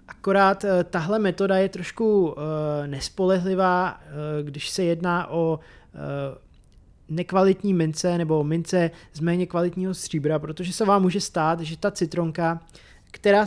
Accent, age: native, 20-39